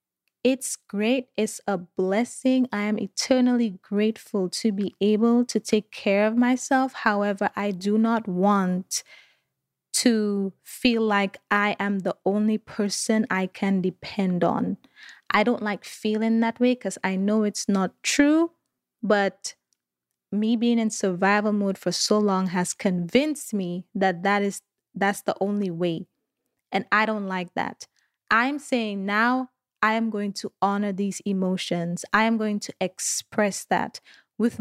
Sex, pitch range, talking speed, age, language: female, 190-225 Hz, 150 wpm, 20-39, English